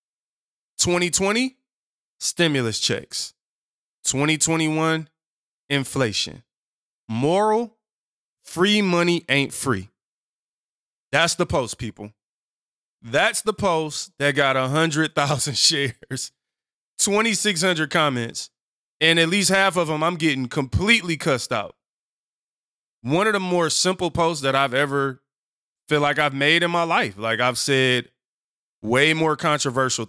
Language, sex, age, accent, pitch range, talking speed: English, male, 20-39, American, 130-170 Hz, 115 wpm